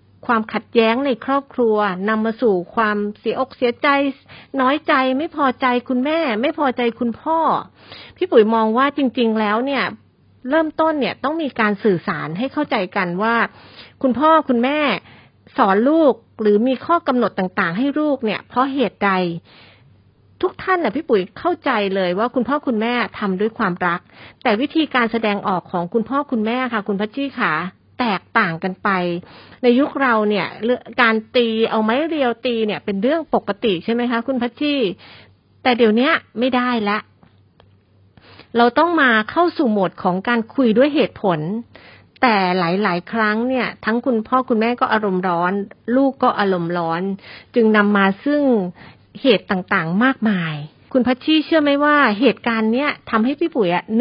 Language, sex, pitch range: Thai, female, 200-265 Hz